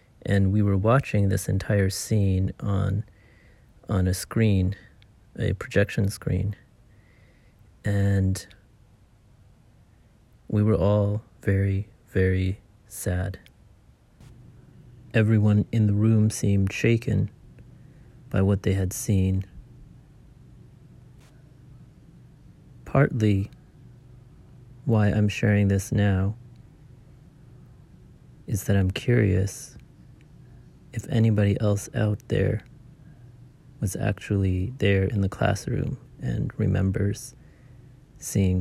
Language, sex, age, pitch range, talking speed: English, male, 30-49, 100-125 Hz, 85 wpm